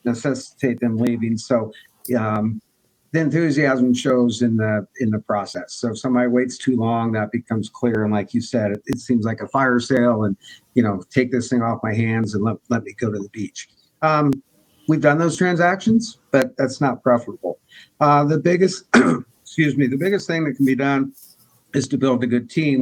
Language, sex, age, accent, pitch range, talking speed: English, male, 50-69, American, 120-140 Hz, 200 wpm